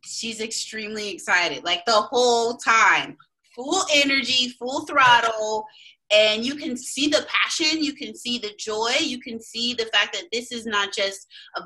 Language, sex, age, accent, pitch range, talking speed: English, female, 30-49, American, 205-285 Hz, 170 wpm